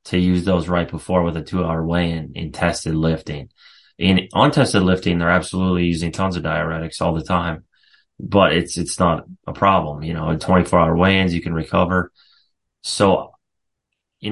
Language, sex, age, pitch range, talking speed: Italian, male, 30-49, 85-100 Hz, 175 wpm